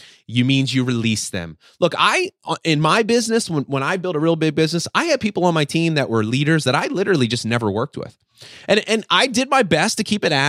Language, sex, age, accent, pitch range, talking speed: English, male, 30-49, American, 115-180 Hz, 245 wpm